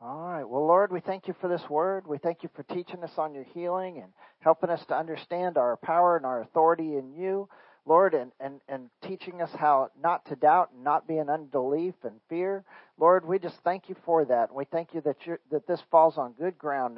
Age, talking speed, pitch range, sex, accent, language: 50-69, 235 wpm, 135-170 Hz, male, American, English